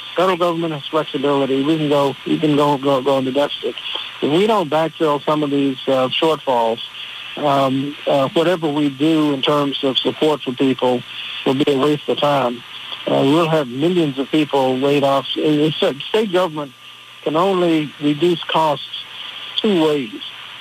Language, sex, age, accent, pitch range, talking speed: English, male, 60-79, American, 135-160 Hz, 170 wpm